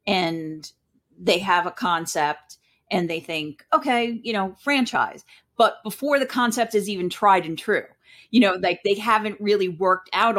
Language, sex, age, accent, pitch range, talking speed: English, female, 40-59, American, 170-220 Hz, 170 wpm